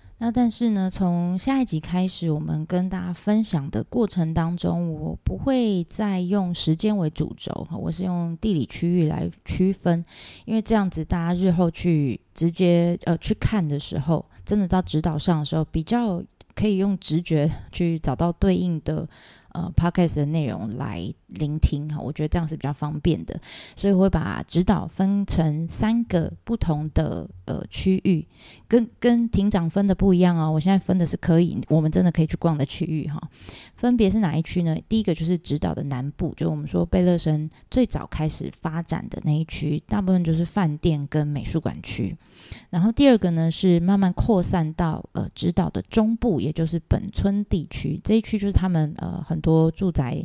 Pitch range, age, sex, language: 155-195 Hz, 20-39, female, Chinese